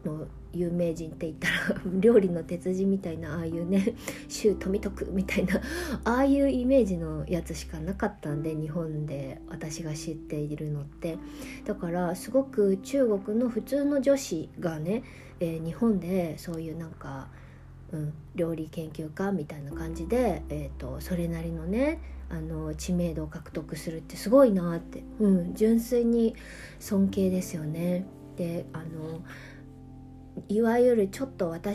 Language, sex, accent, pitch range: Japanese, female, native, 165-215 Hz